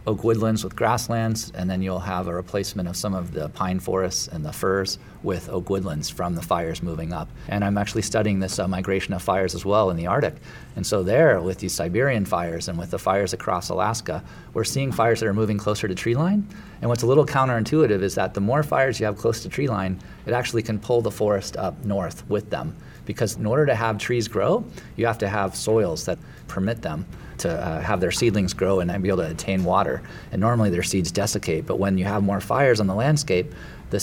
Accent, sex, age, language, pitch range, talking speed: American, male, 40-59, English, 95-115 Hz, 235 wpm